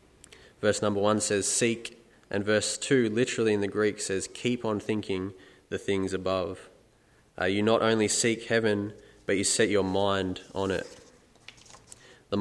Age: 20-39